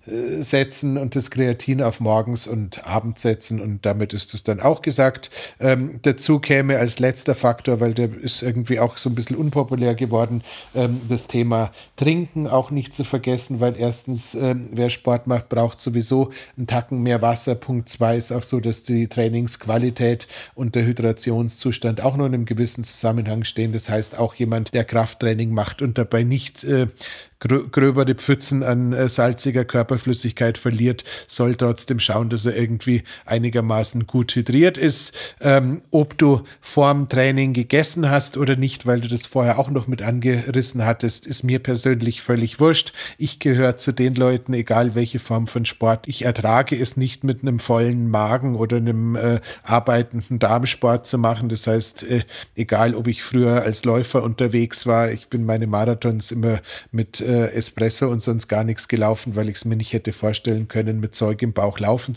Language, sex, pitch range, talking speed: German, male, 115-130 Hz, 175 wpm